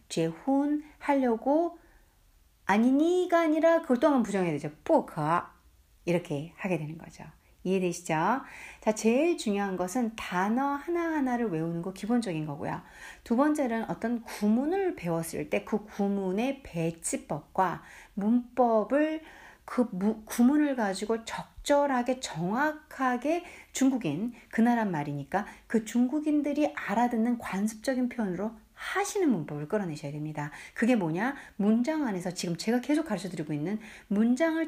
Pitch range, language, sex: 180-275 Hz, Korean, female